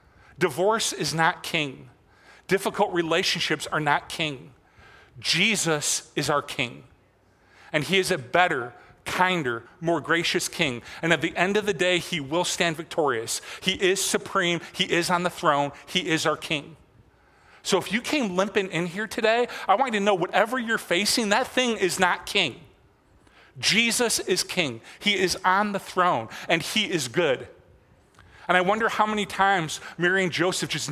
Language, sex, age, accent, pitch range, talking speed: English, male, 40-59, American, 150-195 Hz, 170 wpm